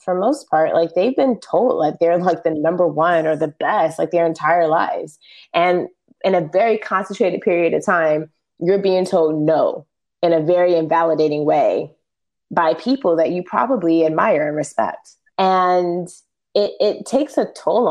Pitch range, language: 160-195 Hz, English